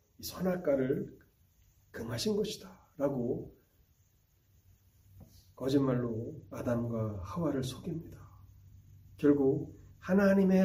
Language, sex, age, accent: Korean, male, 40-59, native